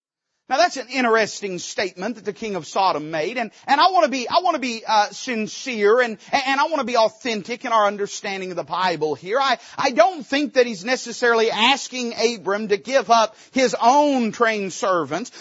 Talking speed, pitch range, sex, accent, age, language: 205 wpm, 215-300 Hz, male, American, 40-59, English